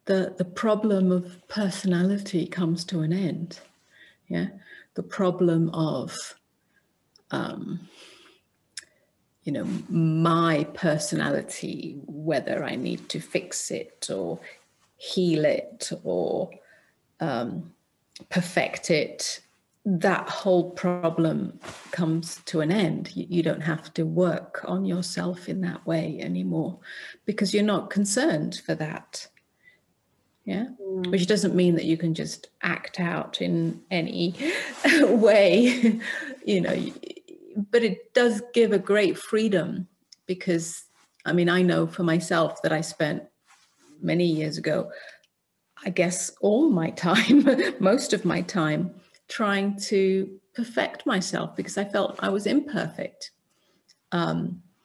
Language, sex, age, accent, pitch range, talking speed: English, female, 40-59, British, 170-205 Hz, 120 wpm